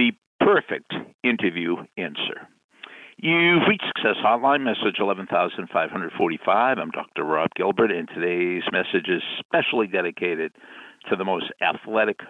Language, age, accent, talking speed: English, 60-79, American, 115 wpm